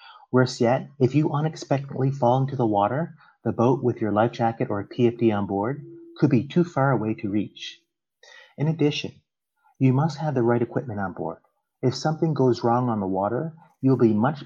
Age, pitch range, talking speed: 30-49, 115-140 Hz, 195 wpm